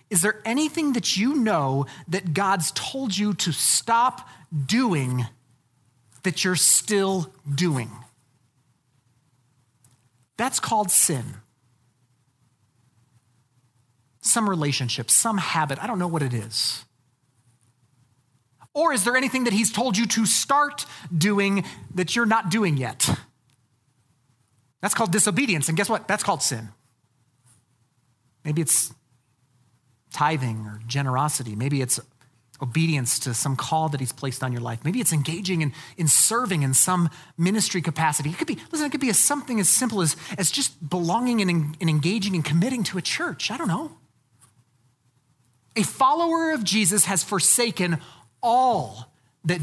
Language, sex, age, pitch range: English, male, 30-49, 125-195 Hz